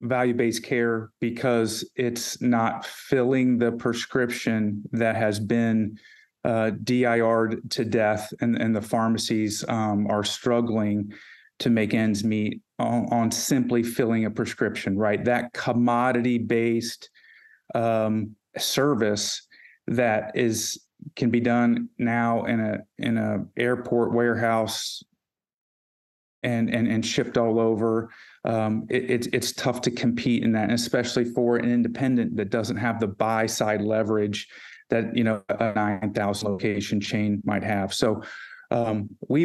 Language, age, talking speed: English, 40-59, 130 wpm